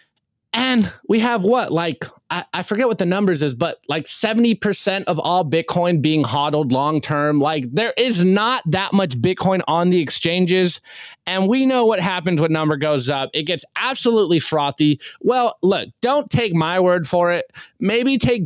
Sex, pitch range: male, 160-225 Hz